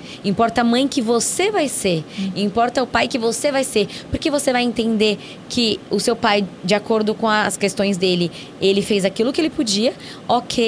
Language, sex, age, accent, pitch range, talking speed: Portuguese, female, 20-39, Brazilian, 205-270 Hz, 195 wpm